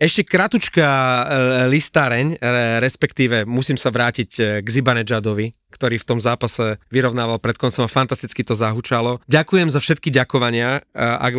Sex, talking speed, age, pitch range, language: male, 130 wpm, 30-49, 120-140 Hz, Slovak